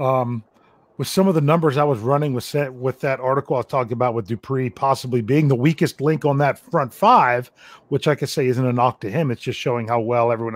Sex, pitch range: male, 125-155 Hz